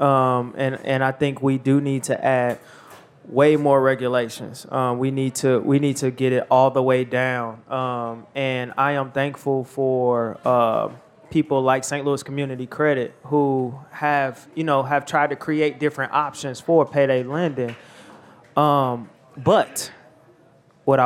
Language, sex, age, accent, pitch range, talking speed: English, male, 20-39, American, 130-145 Hz, 155 wpm